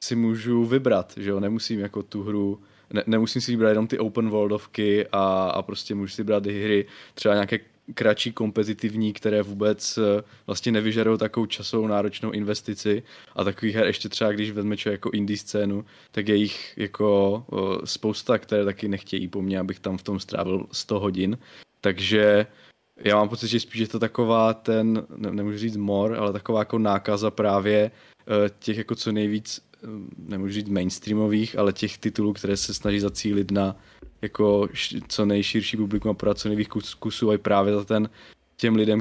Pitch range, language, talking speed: 100-110 Hz, Czech, 170 wpm